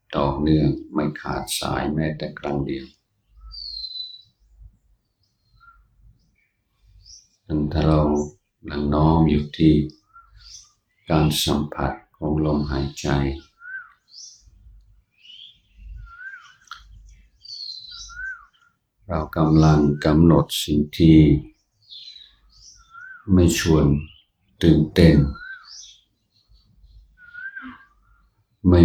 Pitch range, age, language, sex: 75-105 Hz, 60-79, Thai, male